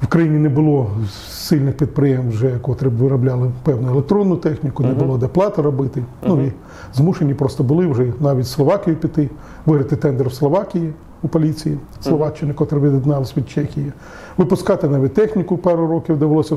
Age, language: 40-59, Ukrainian